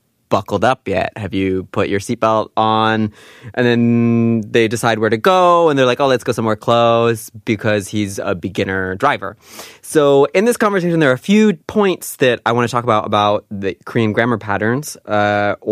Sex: male